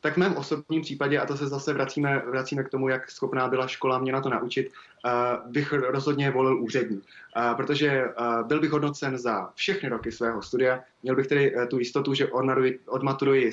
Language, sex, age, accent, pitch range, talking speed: Czech, male, 20-39, native, 120-135 Hz, 180 wpm